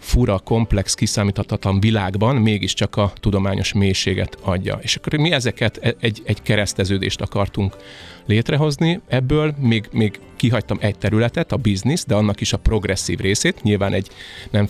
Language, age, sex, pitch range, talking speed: Hungarian, 30-49, male, 100-115 Hz, 145 wpm